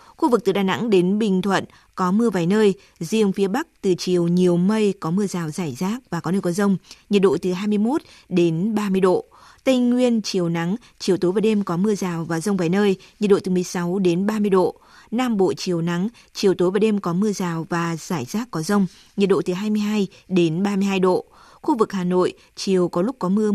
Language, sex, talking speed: Vietnamese, female, 230 wpm